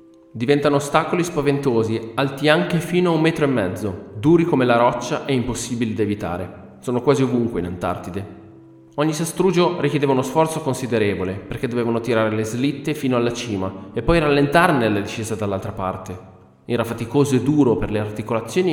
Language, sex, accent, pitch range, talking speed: Italian, male, native, 100-140 Hz, 165 wpm